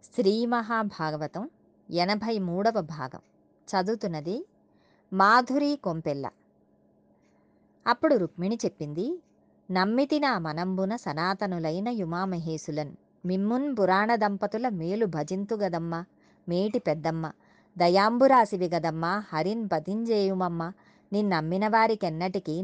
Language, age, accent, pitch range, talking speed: Telugu, 30-49, native, 165-225 Hz, 75 wpm